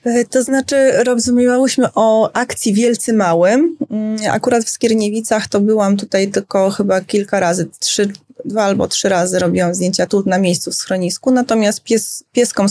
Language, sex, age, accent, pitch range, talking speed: Polish, female, 20-39, native, 165-200 Hz, 140 wpm